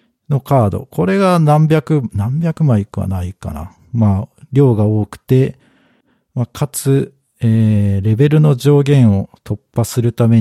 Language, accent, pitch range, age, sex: Japanese, native, 100-130 Hz, 50-69, male